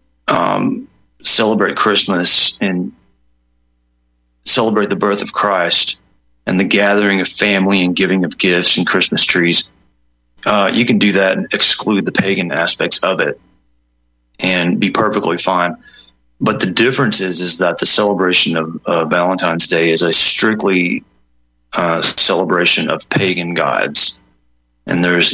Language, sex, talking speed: English, male, 140 wpm